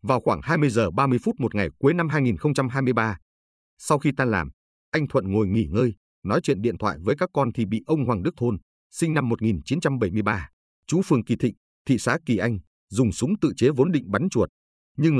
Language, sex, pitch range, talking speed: Vietnamese, male, 85-140 Hz, 210 wpm